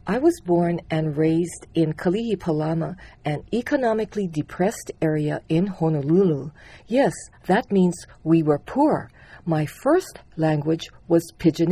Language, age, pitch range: English, 50-69, 160-205 Hz